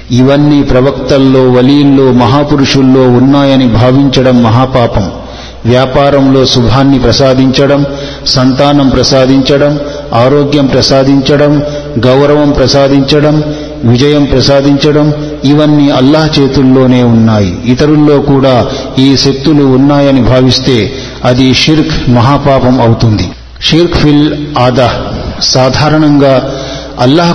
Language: Telugu